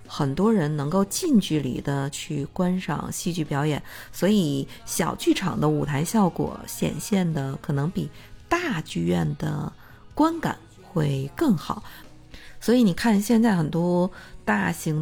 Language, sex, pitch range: Chinese, female, 150-195 Hz